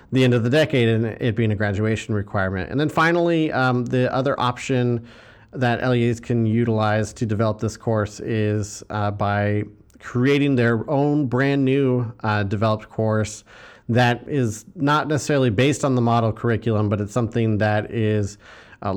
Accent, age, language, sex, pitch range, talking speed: American, 40-59, English, male, 105-120 Hz, 165 wpm